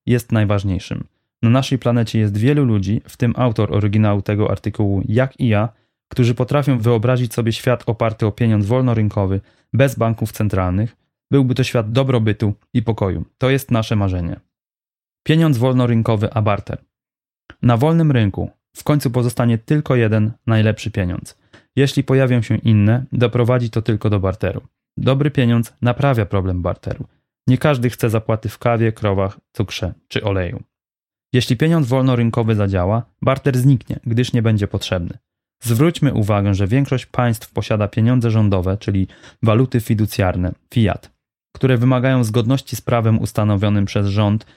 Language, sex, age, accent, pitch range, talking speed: Polish, male, 20-39, native, 105-125 Hz, 145 wpm